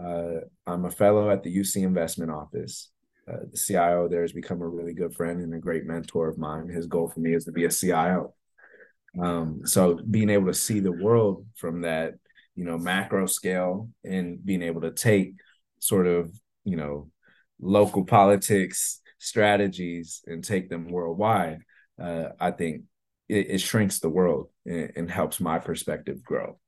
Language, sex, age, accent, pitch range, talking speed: English, male, 20-39, American, 85-95 Hz, 175 wpm